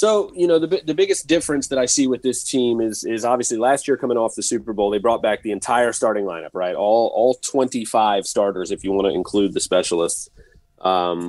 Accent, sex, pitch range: American, male, 100-130 Hz